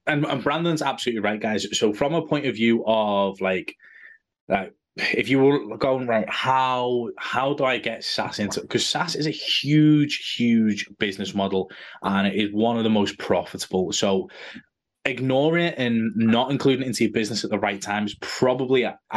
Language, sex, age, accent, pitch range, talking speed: English, male, 20-39, British, 100-130 Hz, 190 wpm